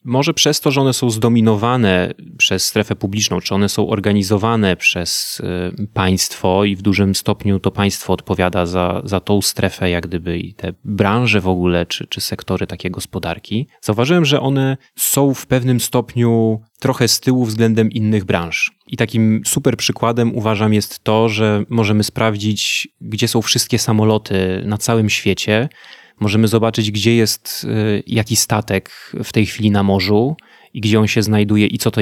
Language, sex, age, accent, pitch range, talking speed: Polish, male, 30-49, native, 105-130 Hz, 165 wpm